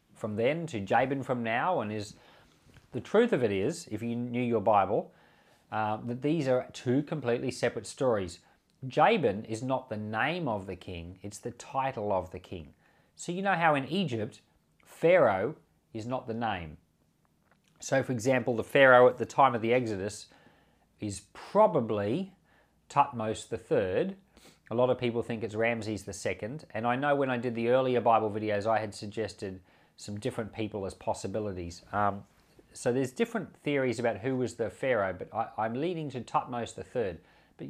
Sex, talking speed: male, 175 wpm